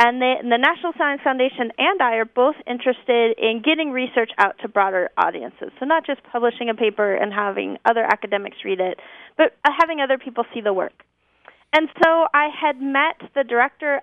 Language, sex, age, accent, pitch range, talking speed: English, female, 30-49, American, 215-265 Hz, 185 wpm